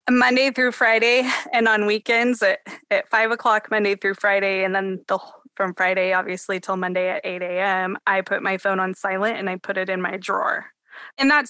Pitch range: 185-210 Hz